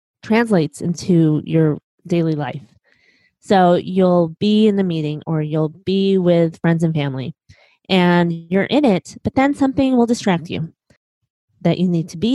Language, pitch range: English, 165-200 Hz